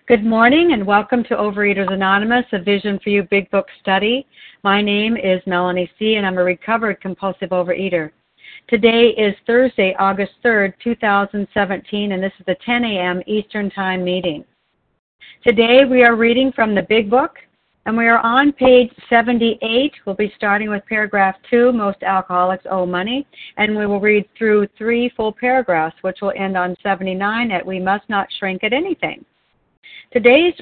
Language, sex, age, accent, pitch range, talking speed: English, female, 50-69, American, 195-235 Hz, 165 wpm